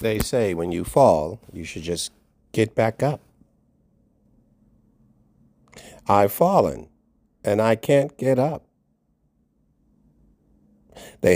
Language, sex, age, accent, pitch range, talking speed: English, male, 50-69, American, 85-105 Hz, 100 wpm